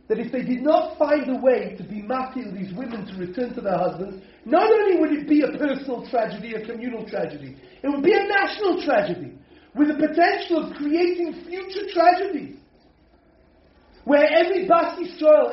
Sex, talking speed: male, 180 wpm